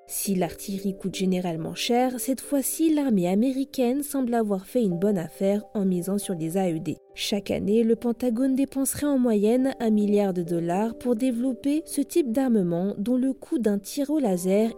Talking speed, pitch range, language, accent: 175 wpm, 195-250 Hz, French, French